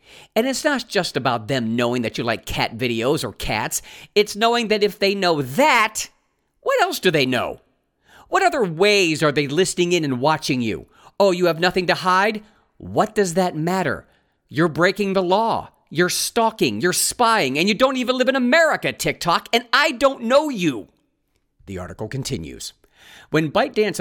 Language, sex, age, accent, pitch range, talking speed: English, male, 50-69, American, 145-215 Hz, 180 wpm